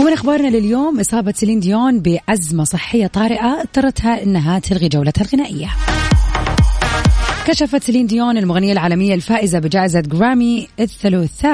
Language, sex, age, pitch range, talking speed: Arabic, female, 20-39, 175-225 Hz, 120 wpm